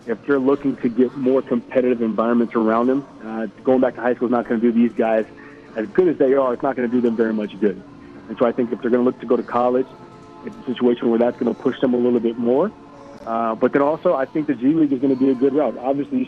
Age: 40-59